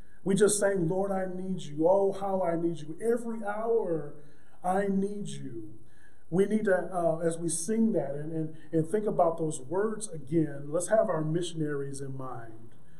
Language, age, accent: English, 30-49, American